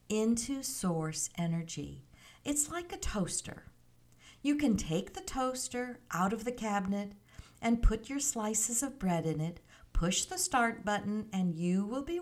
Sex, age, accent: female, 50-69, American